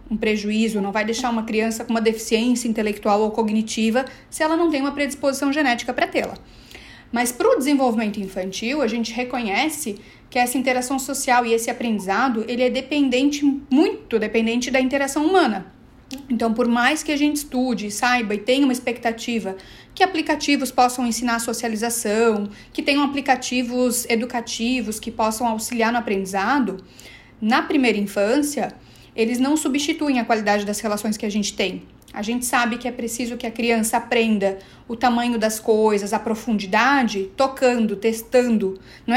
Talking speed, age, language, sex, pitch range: 160 wpm, 40-59, Vietnamese, female, 220-265 Hz